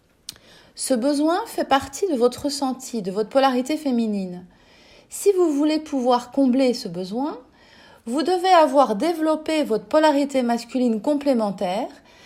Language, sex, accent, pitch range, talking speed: French, female, French, 230-305 Hz, 125 wpm